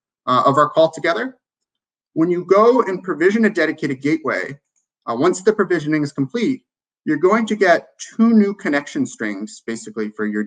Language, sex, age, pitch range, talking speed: English, male, 30-49, 130-200 Hz, 170 wpm